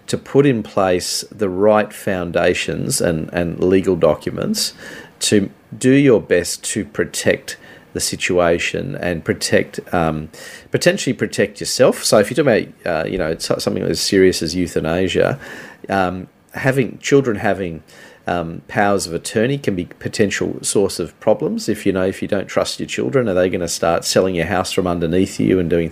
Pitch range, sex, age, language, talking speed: 90-105 Hz, male, 40-59, English, 175 wpm